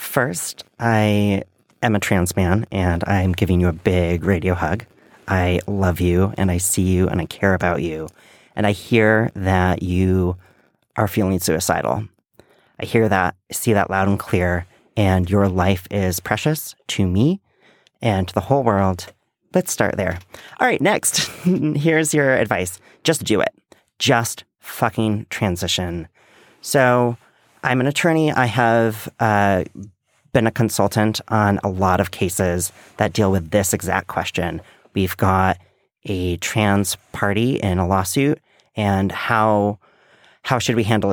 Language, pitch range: English, 95-120 Hz